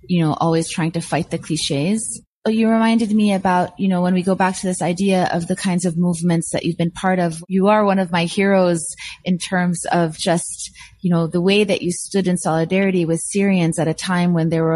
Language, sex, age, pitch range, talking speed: English, female, 30-49, 170-195 Hz, 235 wpm